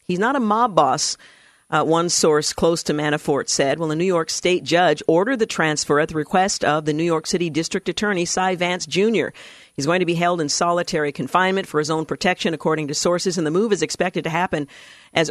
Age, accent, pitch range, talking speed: 50-69, American, 150-180 Hz, 225 wpm